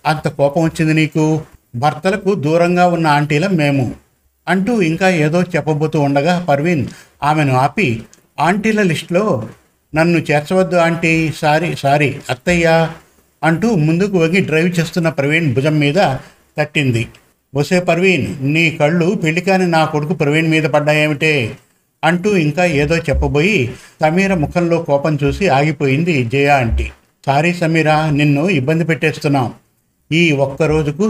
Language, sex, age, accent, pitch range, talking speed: Telugu, male, 50-69, native, 145-170 Hz, 120 wpm